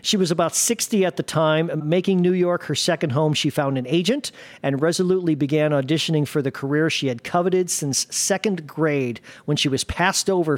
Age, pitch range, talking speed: 40-59, 145-180 Hz, 200 wpm